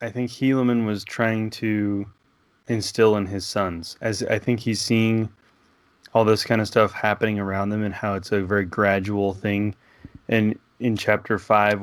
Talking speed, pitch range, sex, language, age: 170 wpm, 105-125 Hz, male, English, 20-39